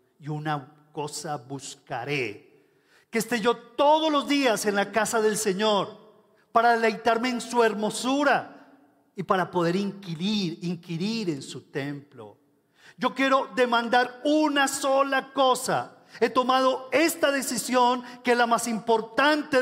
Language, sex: Spanish, male